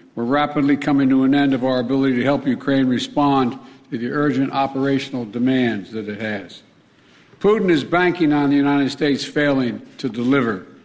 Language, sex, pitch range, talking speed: English, male, 125-150 Hz, 170 wpm